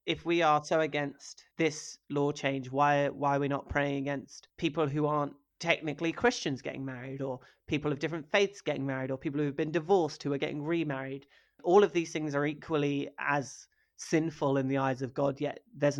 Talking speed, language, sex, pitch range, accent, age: 205 wpm, English, male, 135-150 Hz, British, 30-49